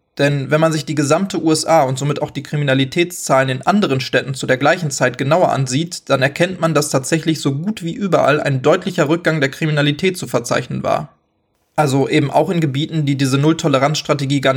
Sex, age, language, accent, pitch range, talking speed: male, 20-39, German, German, 135-160 Hz, 195 wpm